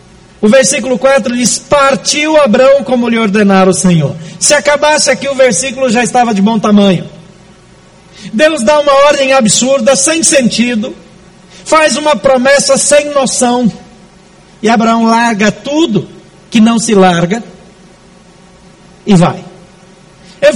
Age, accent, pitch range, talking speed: 60-79, Brazilian, 185-235 Hz, 130 wpm